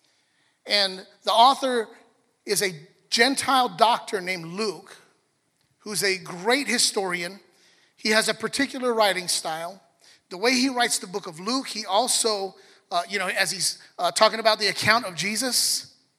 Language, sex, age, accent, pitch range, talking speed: English, male, 30-49, American, 190-240 Hz, 150 wpm